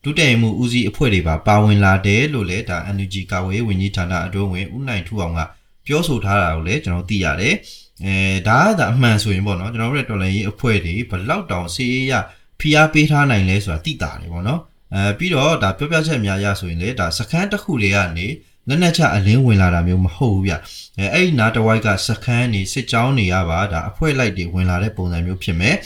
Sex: male